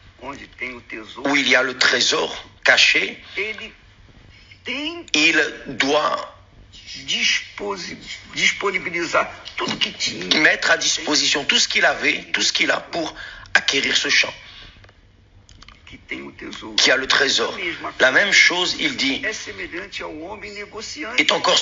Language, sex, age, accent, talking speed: French, male, 60-79, French, 95 wpm